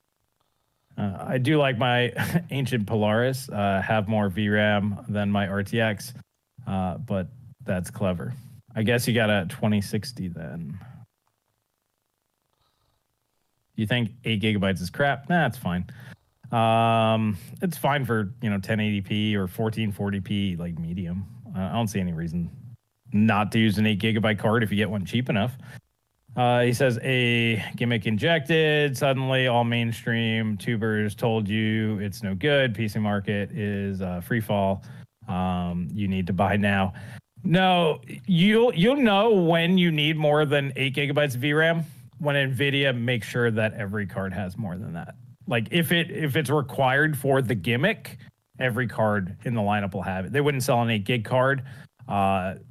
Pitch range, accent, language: 105-135 Hz, American, English